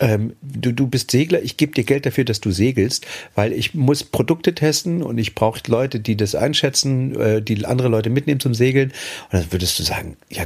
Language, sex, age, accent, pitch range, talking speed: German, male, 40-59, German, 110-140 Hz, 220 wpm